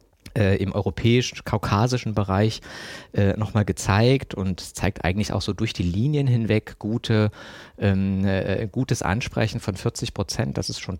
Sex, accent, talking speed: male, German, 140 wpm